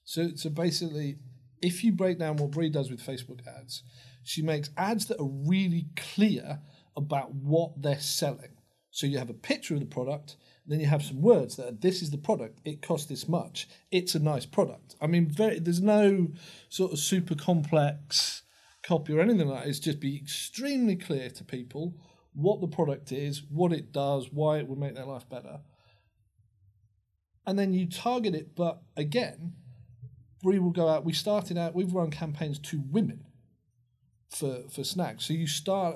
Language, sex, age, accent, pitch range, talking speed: English, male, 40-59, British, 140-185 Hz, 185 wpm